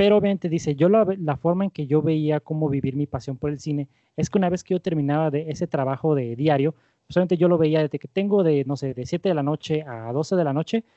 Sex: male